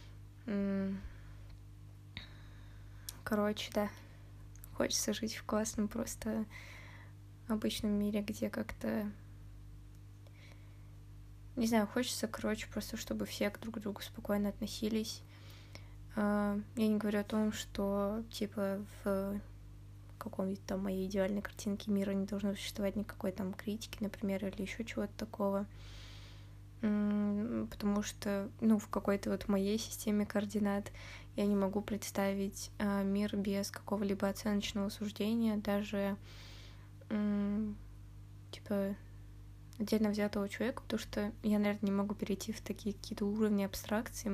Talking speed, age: 110 wpm, 20-39